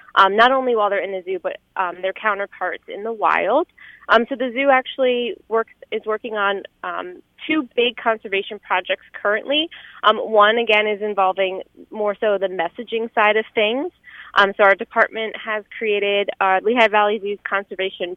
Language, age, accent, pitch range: English, 20-39, American, 195-245 Hz